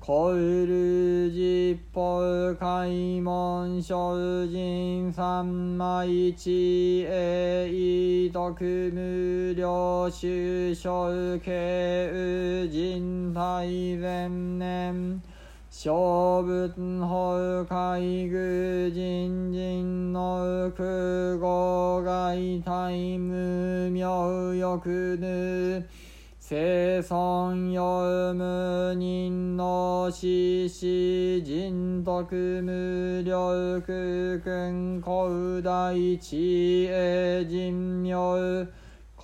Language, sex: Japanese, male